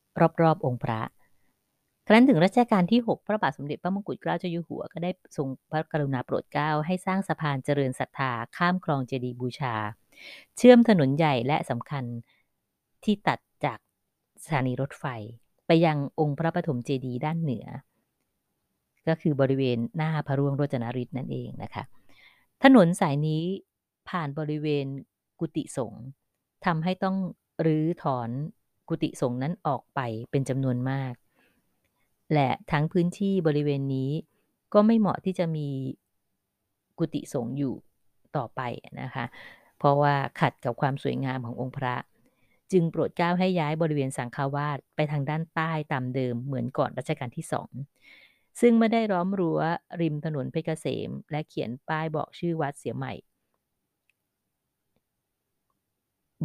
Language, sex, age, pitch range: Thai, female, 20-39, 130-165 Hz